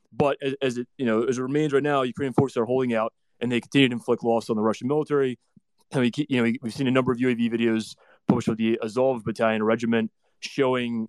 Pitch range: 115-135 Hz